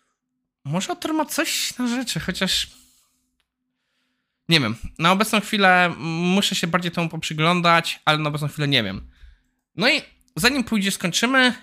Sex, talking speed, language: male, 150 wpm, Polish